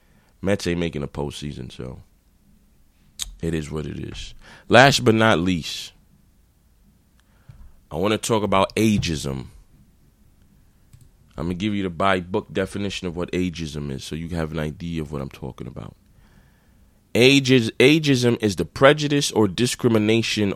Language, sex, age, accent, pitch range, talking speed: English, male, 20-39, American, 85-120 Hz, 150 wpm